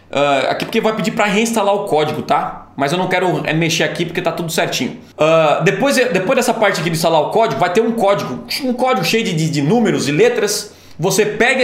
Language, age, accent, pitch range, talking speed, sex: Portuguese, 20-39, Brazilian, 170-230 Hz, 215 wpm, male